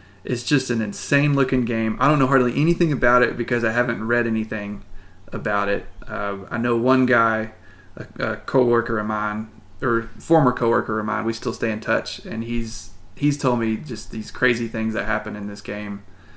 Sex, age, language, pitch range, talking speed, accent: male, 20-39, English, 105-120 Hz, 200 wpm, American